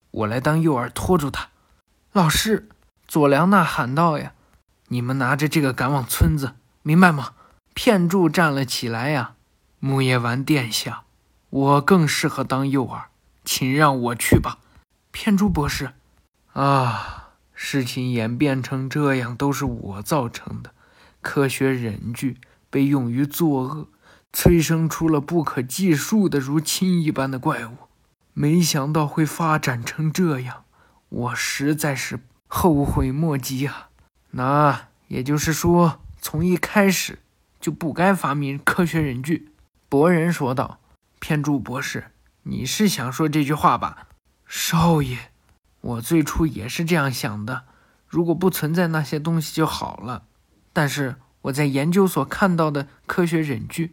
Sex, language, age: male, Chinese, 20-39